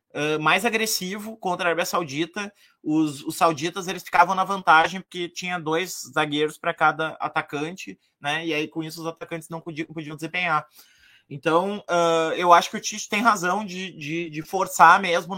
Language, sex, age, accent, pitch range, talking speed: Portuguese, male, 20-39, Brazilian, 140-175 Hz, 185 wpm